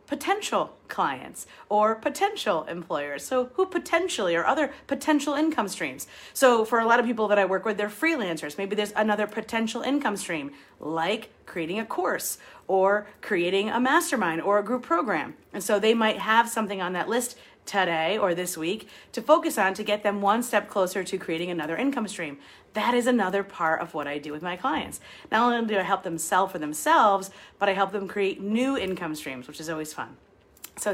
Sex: female